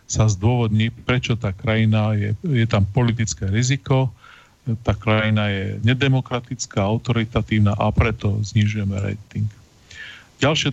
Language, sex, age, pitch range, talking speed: Slovak, male, 40-59, 110-130 Hz, 110 wpm